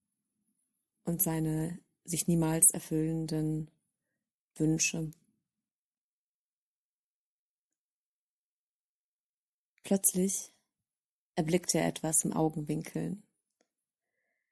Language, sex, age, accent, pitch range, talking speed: English, female, 30-49, German, 160-180 Hz, 50 wpm